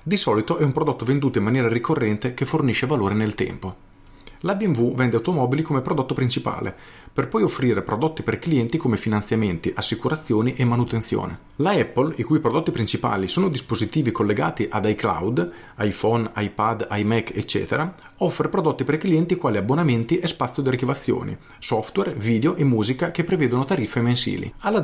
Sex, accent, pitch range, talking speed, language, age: male, native, 115-150 Hz, 160 wpm, Italian, 40-59